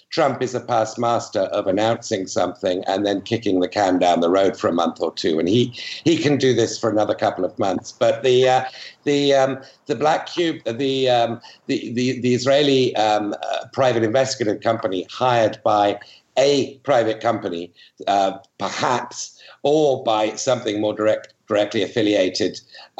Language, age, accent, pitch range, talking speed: English, 60-79, British, 105-130 Hz, 170 wpm